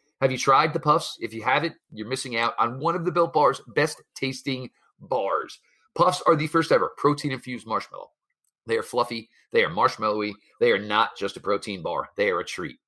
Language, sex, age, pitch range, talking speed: English, male, 40-59, 120-155 Hz, 210 wpm